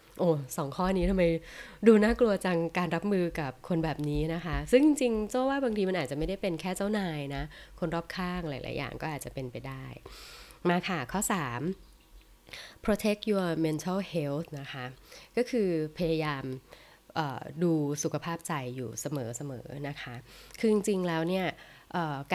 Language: Thai